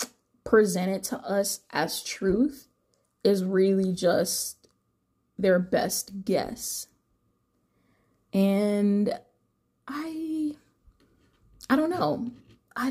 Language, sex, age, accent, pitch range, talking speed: English, female, 20-39, American, 195-245 Hz, 80 wpm